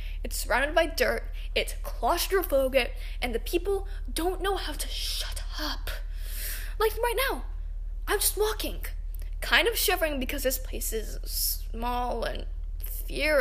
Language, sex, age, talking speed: English, female, 10-29, 140 wpm